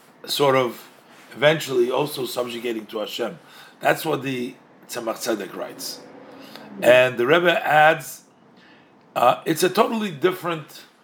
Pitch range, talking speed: 130-170 Hz, 120 wpm